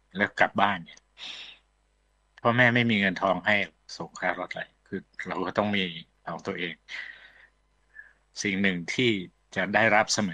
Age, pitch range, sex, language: 60-79, 95-115 Hz, male, Thai